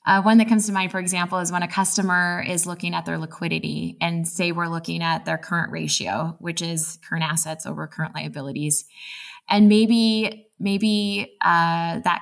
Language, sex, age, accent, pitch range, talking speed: English, female, 20-39, American, 165-200 Hz, 180 wpm